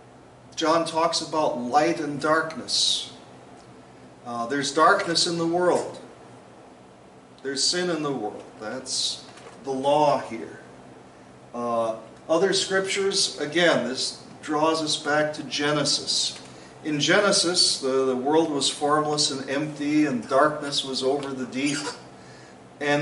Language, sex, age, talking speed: English, male, 40-59, 125 wpm